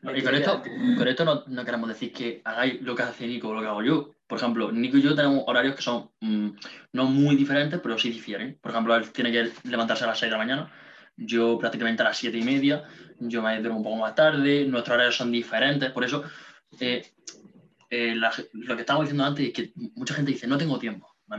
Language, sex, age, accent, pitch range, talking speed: Spanish, male, 20-39, Spanish, 120-160 Hz, 230 wpm